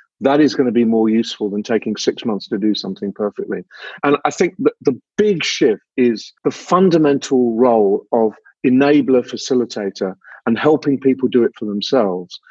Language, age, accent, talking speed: English, 50-69, British, 170 wpm